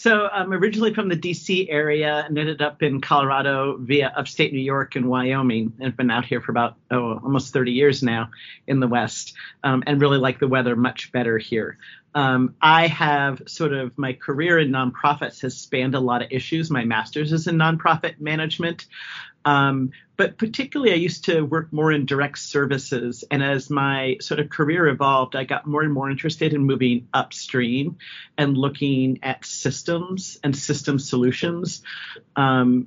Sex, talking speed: male, 180 wpm